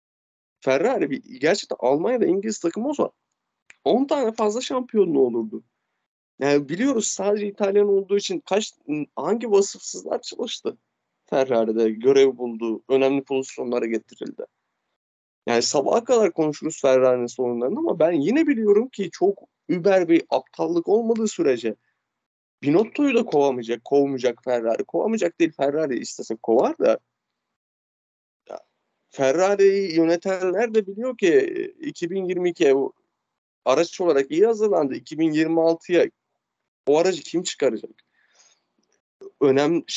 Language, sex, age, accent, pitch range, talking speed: Turkish, male, 30-49, native, 140-225 Hz, 110 wpm